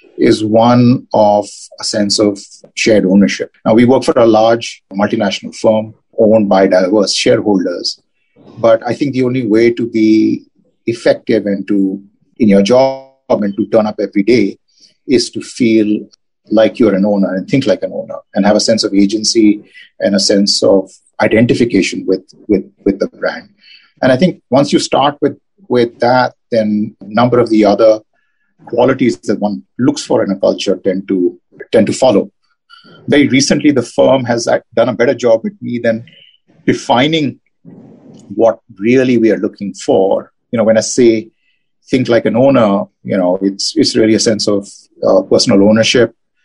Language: Hindi